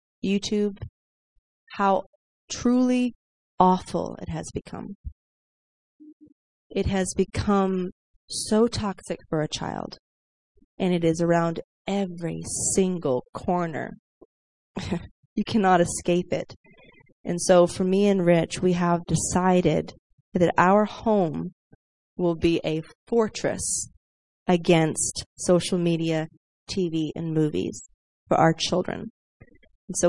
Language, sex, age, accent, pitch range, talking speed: English, female, 30-49, American, 160-200 Hz, 105 wpm